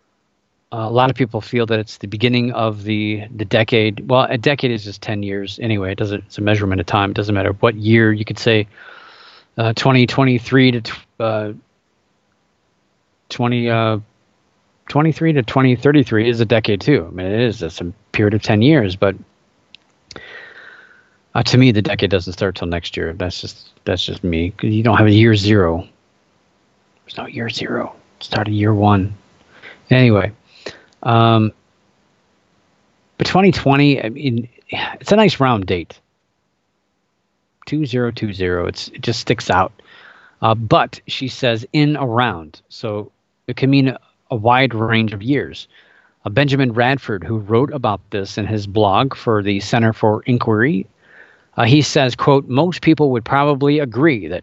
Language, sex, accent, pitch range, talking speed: English, male, American, 105-130 Hz, 170 wpm